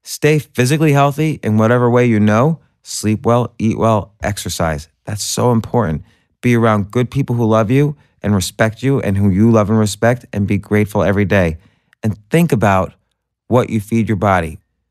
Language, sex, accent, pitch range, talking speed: English, male, American, 100-120 Hz, 180 wpm